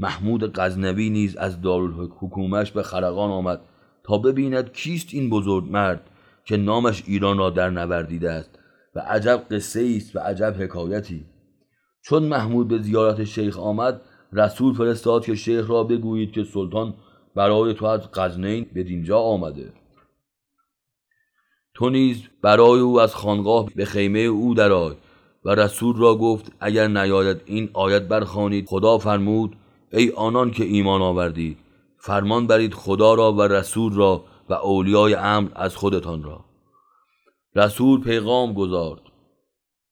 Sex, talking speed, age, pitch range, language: male, 135 wpm, 30-49, 95-115 Hz, Persian